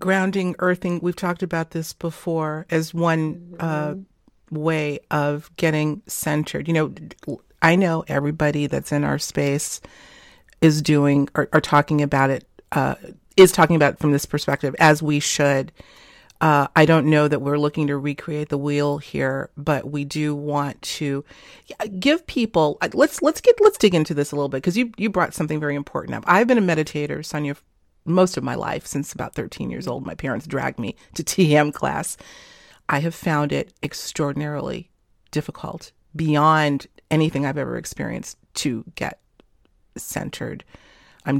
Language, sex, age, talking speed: English, female, 40-59, 165 wpm